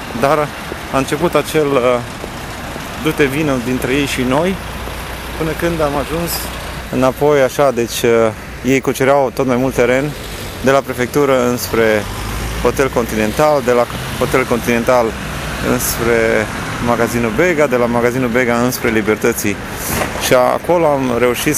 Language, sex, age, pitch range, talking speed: Romanian, male, 30-49, 115-145 Hz, 135 wpm